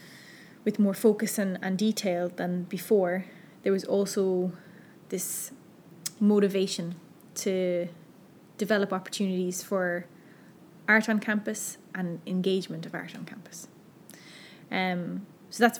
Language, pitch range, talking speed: English, 180-210 Hz, 110 wpm